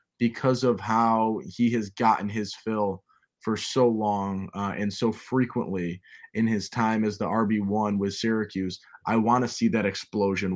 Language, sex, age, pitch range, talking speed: English, male, 20-39, 100-120 Hz, 165 wpm